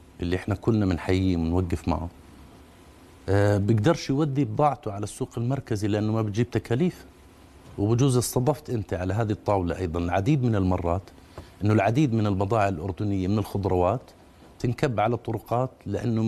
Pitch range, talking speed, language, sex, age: 90-130 Hz, 140 wpm, Arabic, male, 50-69